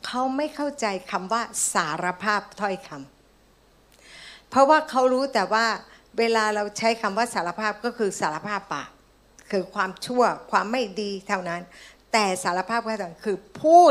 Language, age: Thai, 60-79